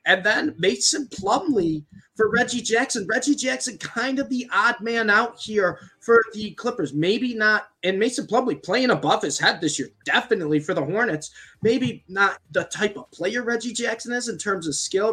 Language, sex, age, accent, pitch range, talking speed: English, male, 20-39, American, 160-225 Hz, 190 wpm